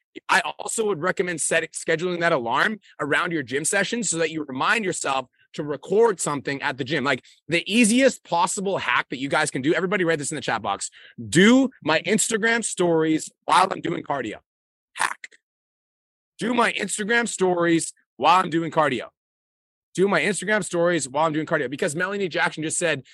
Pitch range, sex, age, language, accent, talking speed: 155-190 Hz, male, 30-49, English, American, 180 wpm